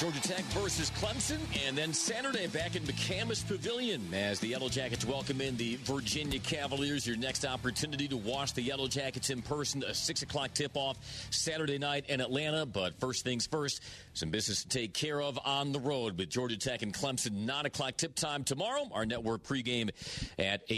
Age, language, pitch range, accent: 40-59, English, 105-140 Hz, American